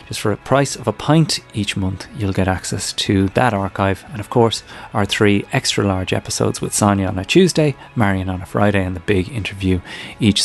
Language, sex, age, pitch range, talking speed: English, male, 30-49, 100-120 Hz, 215 wpm